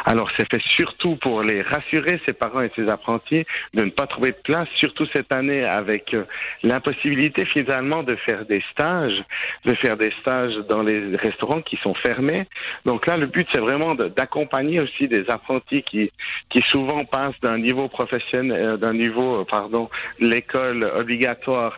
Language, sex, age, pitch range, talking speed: French, male, 50-69, 105-135 Hz, 165 wpm